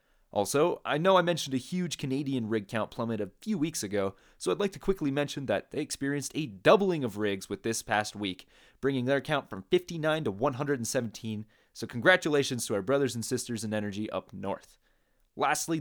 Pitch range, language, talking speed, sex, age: 105-150 Hz, English, 195 wpm, male, 30-49